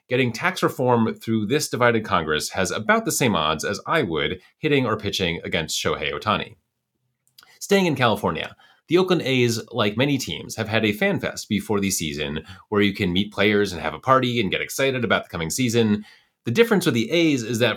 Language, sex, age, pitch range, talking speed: English, male, 30-49, 100-135 Hz, 205 wpm